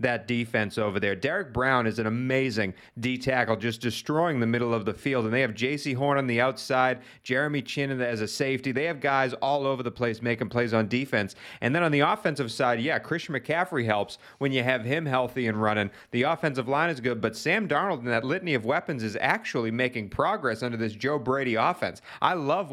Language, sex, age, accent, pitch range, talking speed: English, male, 30-49, American, 120-145 Hz, 220 wpm